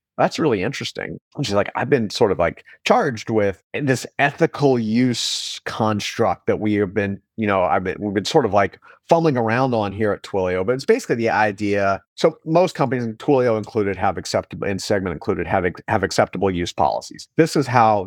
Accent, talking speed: American, 195 wpm